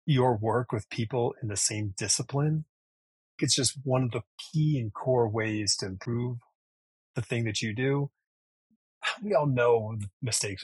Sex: male